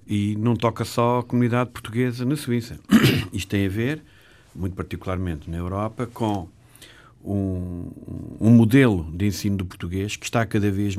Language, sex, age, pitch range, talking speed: Portuguese, male, 50-69, 95-110 Hz, 160 wpm